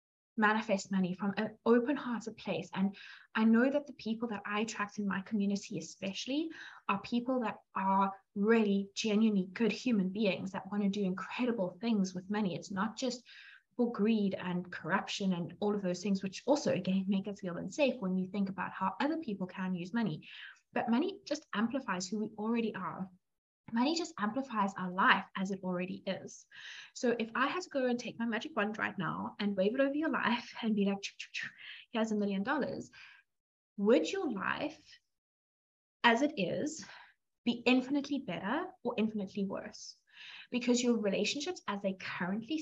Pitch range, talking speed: 195-240 Hz, 180 wpm